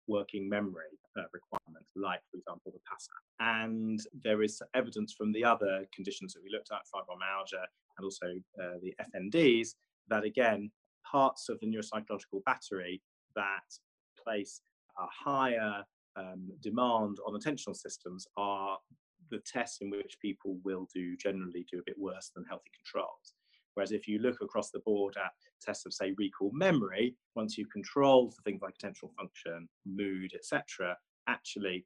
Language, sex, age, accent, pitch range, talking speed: English, male, 30-49, British, 95-115 Hz, 155 wpm